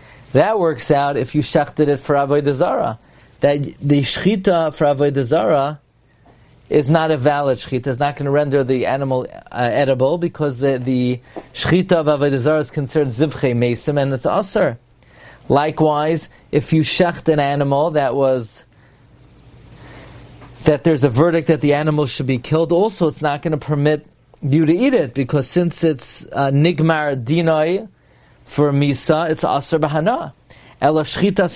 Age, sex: 40-59, male